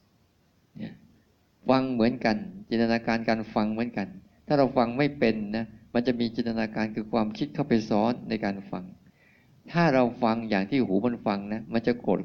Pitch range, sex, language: 100-125 Hz, male, Thai